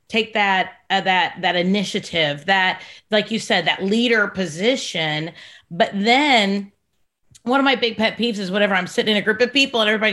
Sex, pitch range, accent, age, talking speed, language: female, 195-245 Hz, American, 30-49, 190 wpm, English